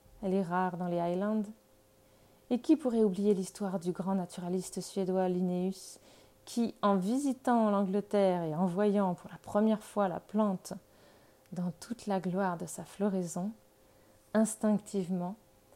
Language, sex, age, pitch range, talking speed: French, female, 30-49, 180-230 Hz, 140 wpm